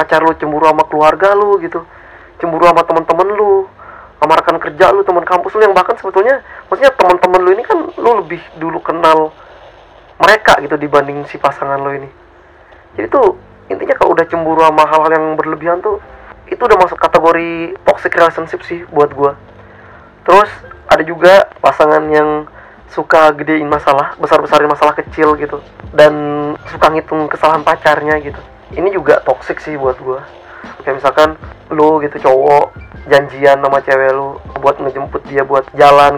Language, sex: Indonesian, male